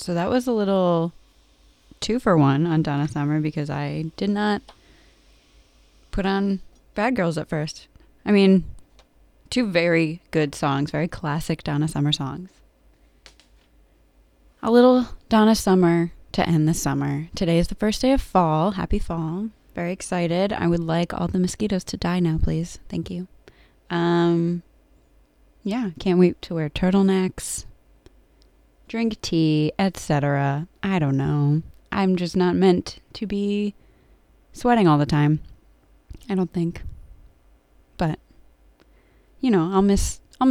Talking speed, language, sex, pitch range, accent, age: 140 wpm, English, female, 150-195 Hz, American, 20-39